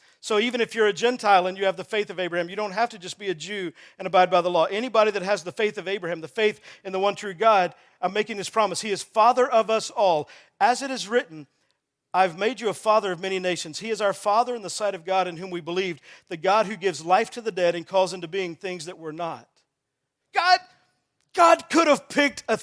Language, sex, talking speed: English, male, 255 wpm